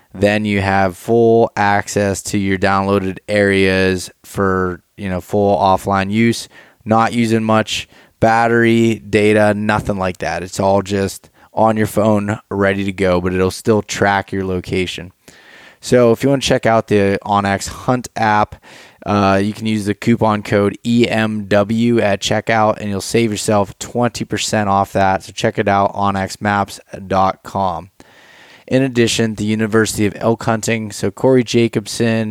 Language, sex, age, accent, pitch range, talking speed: English, male, 20-39, American, 95-110 Hz, 150 wpm